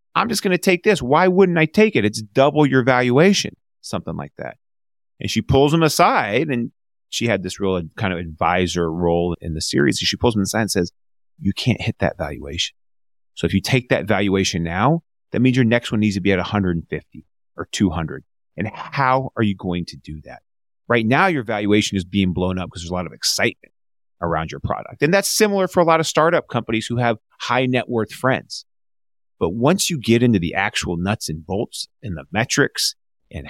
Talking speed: 215 wpm